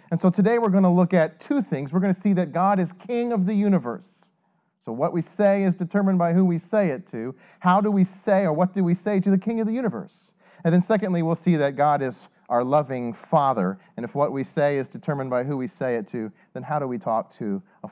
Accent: American